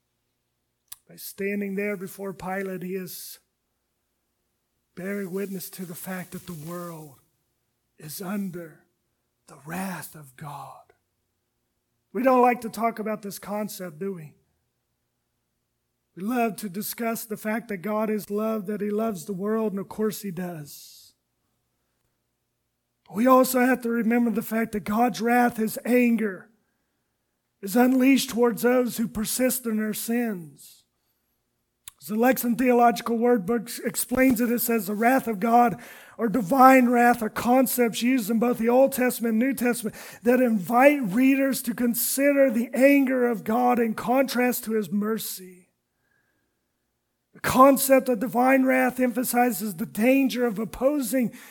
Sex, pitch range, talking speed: male, 190-245 Hz, 140 wpm